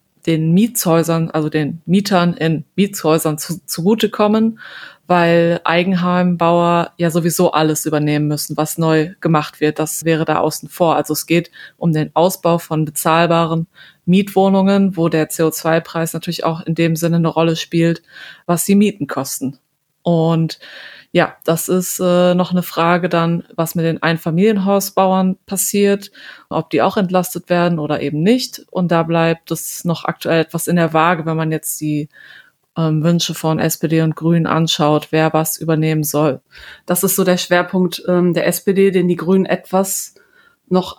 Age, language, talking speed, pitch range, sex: 20-39, German, 160 wpm, 160-185 Hz, female